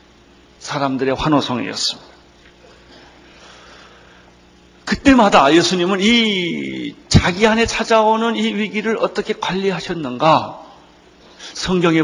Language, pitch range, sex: Korean, 120-185 Hz, male